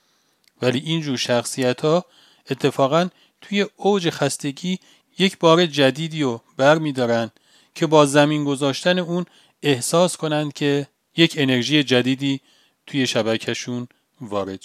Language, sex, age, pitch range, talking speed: Persian, male, 40-59, 130-175 Hz, 110 wpm